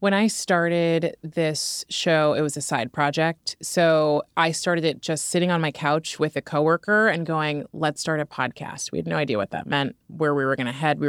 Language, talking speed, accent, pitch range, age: English, 225 wpm, American, 150-175 Hz, 20-39